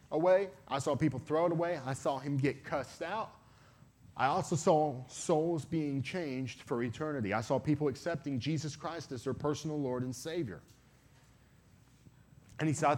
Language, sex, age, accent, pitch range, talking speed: English, male, 30-49, American, 120-160 Hz, 165 wpm